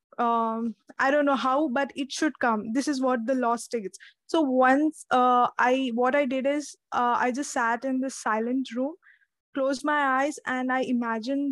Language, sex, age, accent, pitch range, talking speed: English, female, 20-39, Indian, 235-275 Hz, 195 wpm